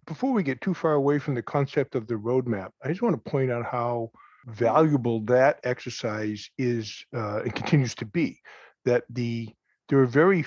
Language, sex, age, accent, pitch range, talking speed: English, male, 50-69, American, 120-150 Hz, 190 wpm